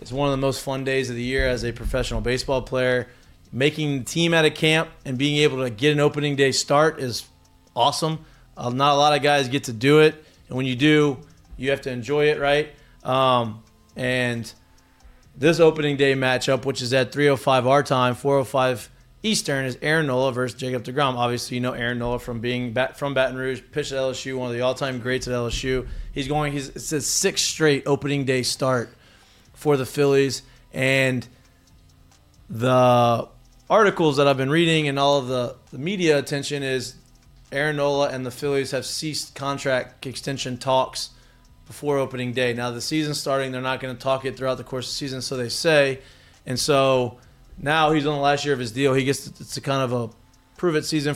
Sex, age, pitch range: male, 20-39, 125-145 Hz